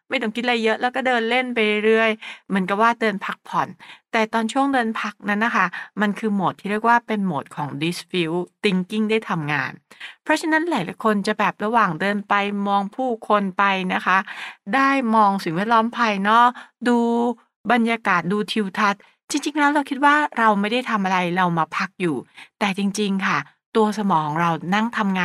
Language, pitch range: English, 190-240 Hz